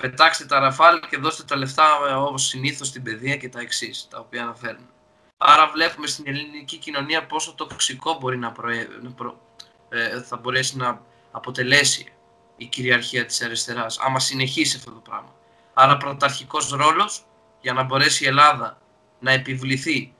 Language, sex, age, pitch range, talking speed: Greek, male, 20-39, 115-145 Hz, 155 wpm